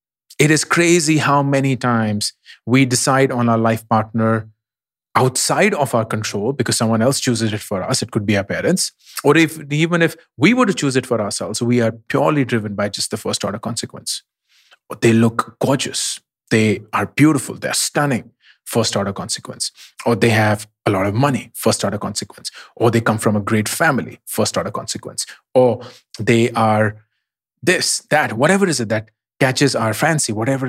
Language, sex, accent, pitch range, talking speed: English, male, Indian, 110-135 Hz, 175 wpm